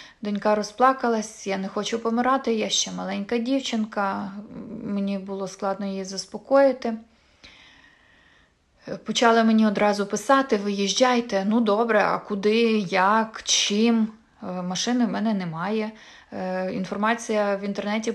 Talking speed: 110 wpm